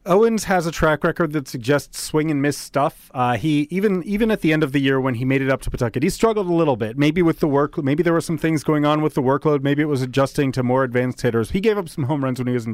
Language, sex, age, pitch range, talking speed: English, male, 30-49, 130-160 Hz, 305 wpm